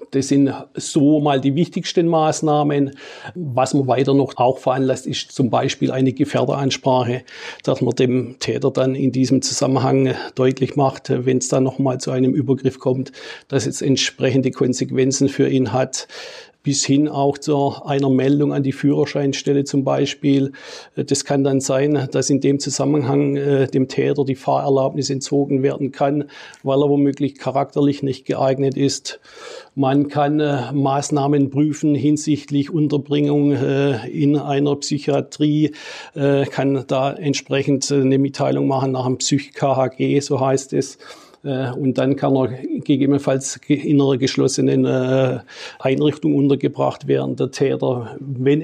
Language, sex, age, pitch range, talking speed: German, male, 50-69, 135-145 Hz, 135 wpm